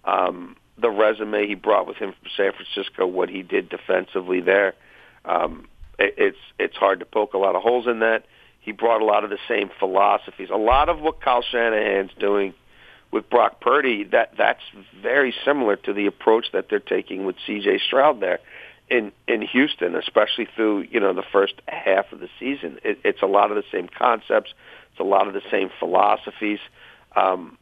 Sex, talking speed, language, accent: male, 195 wpm, English, American